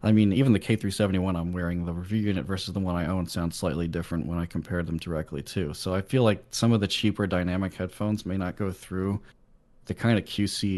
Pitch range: 85-105 Hz